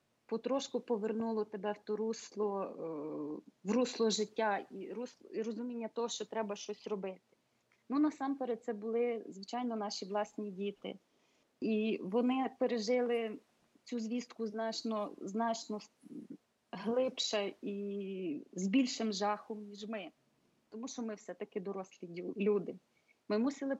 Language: Ukrainian